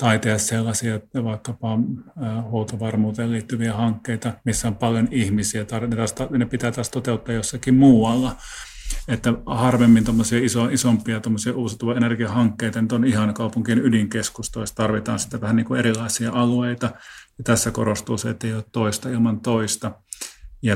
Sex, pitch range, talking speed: male, 105-120 Hz, 125 wpm